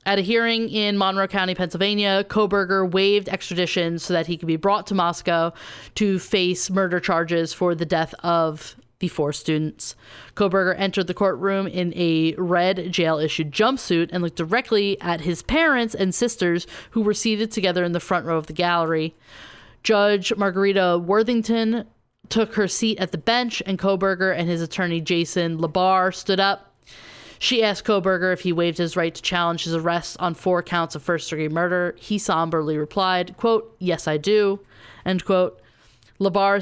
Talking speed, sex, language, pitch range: 170 wpm, female, English, 170-200 Hz